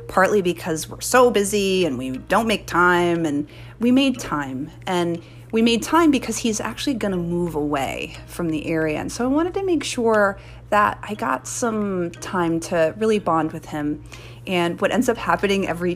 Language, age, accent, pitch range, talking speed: English, 30-49, American, 155-210 Hz, 190 wpm